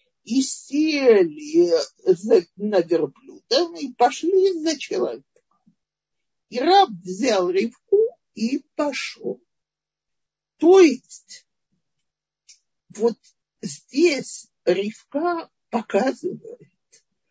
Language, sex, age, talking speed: Russian, male, 50-69, 70 wpm